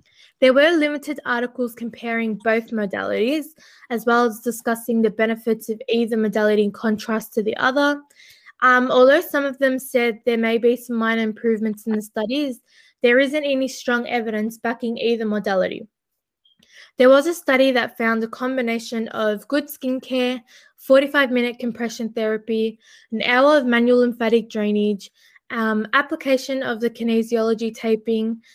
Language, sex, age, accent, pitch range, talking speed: English, female, 20-39, Australian, 225-260 Hz, 145 wpm